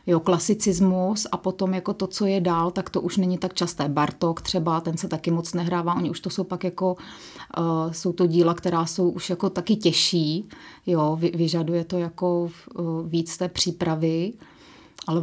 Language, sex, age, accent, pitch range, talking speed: Czech, female, 30-49, native, 170-185 Hz, 170 wpm